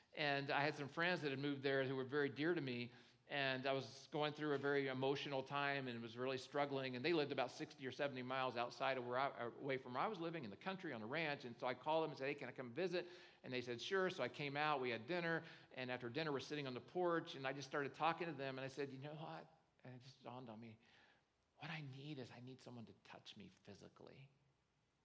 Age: 50-69